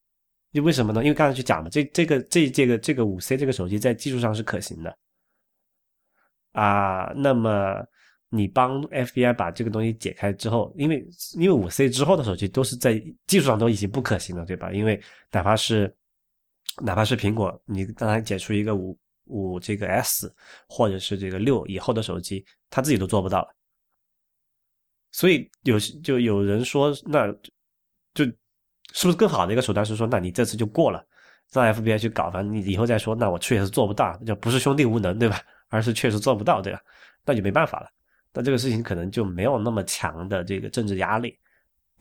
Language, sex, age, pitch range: Chinese, male, 20-39, 100-130 Hz